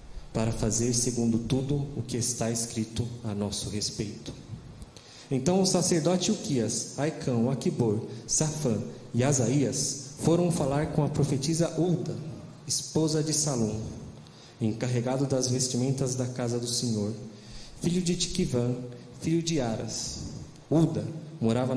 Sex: male